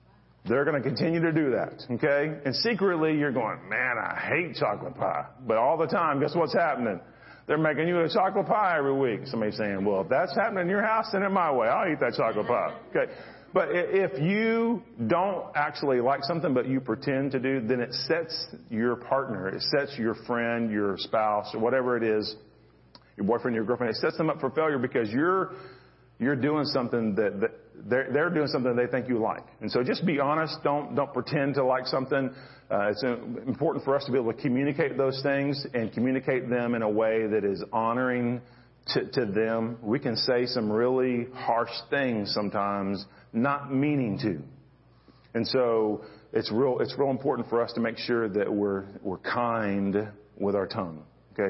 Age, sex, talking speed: 40-59, male, 195 wpm